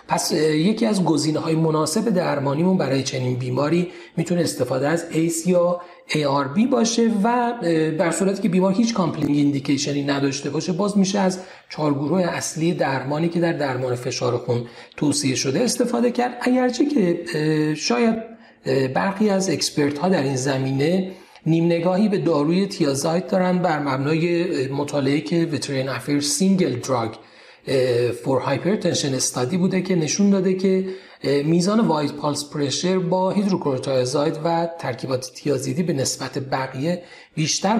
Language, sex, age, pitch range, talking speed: Persian, male, 40-59, 140-185 Hz, 140 wpm